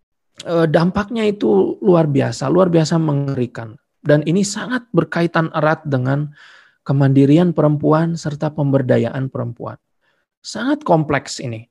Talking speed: 110 wpm